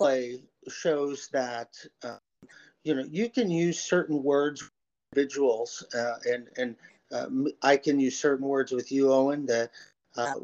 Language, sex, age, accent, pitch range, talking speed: English, male, 40-59, American, 125-145 Hz, 155 wpm